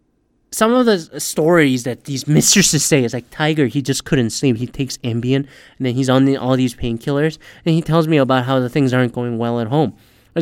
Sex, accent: male, American